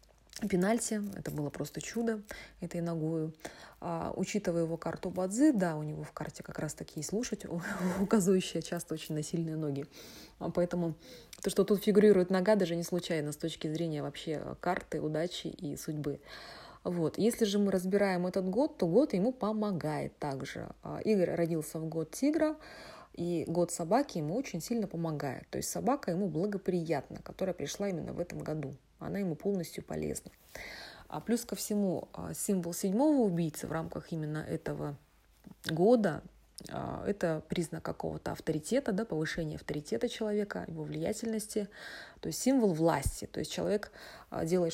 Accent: native